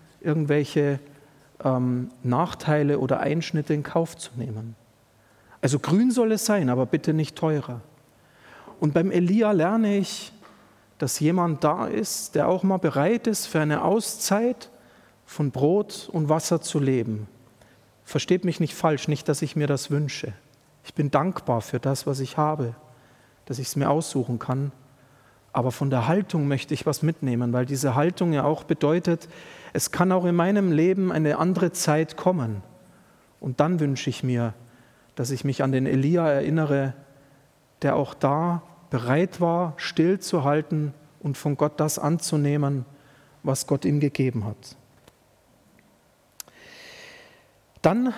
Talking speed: 145 wpm